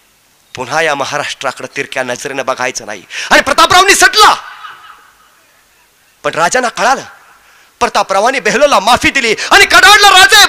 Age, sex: 30-49, male